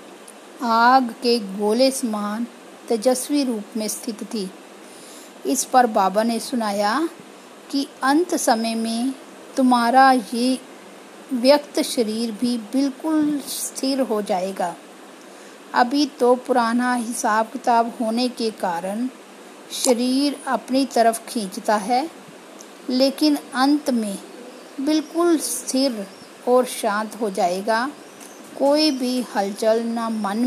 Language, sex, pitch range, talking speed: Hindi, female, 225-270 Hz, 105 wpm